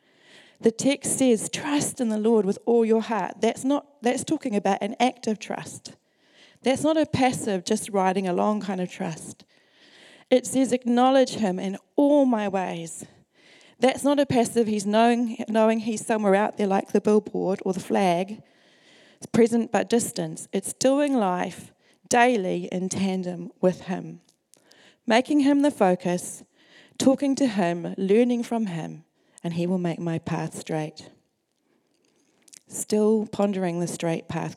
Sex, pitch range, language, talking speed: female, 185-240 Hz, English, 155 wpm